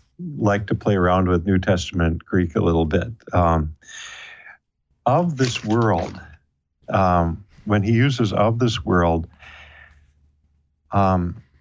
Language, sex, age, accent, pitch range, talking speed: English, male, 50-69, American, 85-110 Hz, 120 wpm